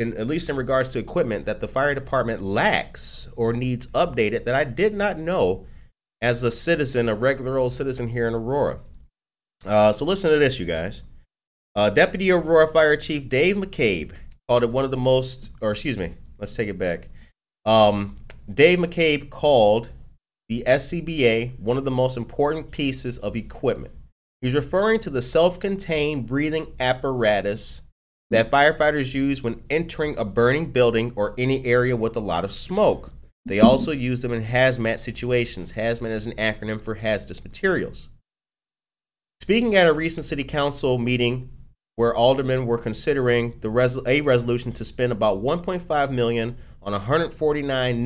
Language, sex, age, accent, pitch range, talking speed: English, male, 30-49, American, 115-145 Hz, 160 wpm